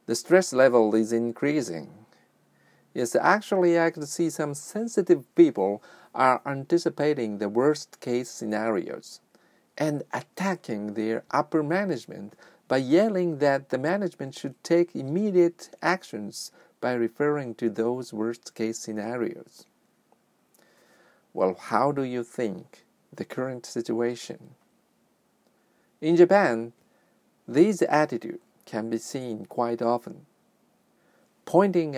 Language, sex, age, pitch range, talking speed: English, male, 40-59, 115-160 Hz, 105 wpm